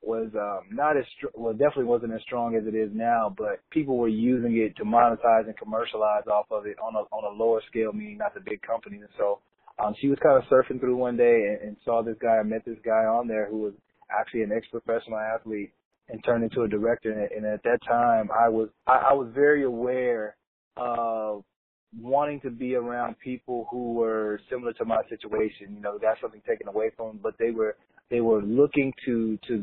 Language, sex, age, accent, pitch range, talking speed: English, male, 20-39, American, 110-125 Hz, 225 wpm